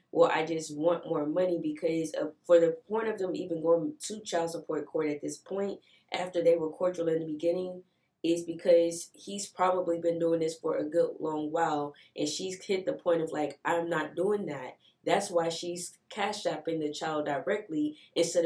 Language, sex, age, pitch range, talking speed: English, female, 20-39, 160-180 Hz, 195 wpm